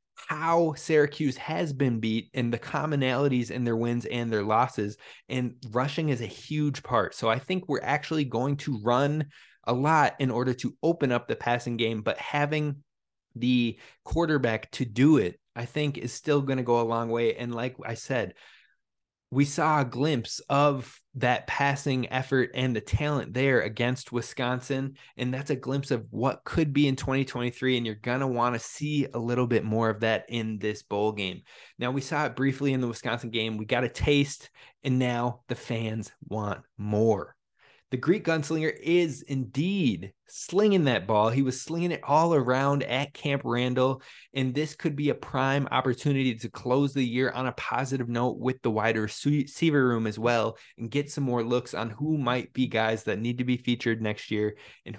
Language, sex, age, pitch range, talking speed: English, male, 20-39, 115-140 Hz, 190 wpm